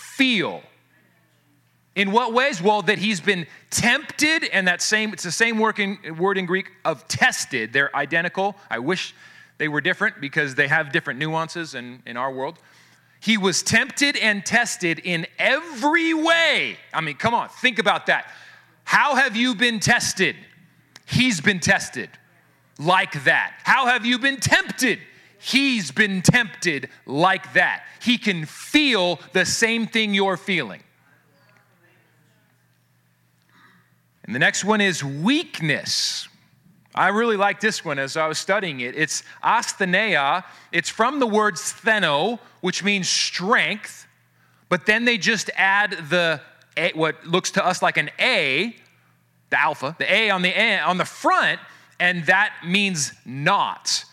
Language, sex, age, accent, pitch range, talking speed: English, male, 30-49, American, 155-220 Hz, 145 wpm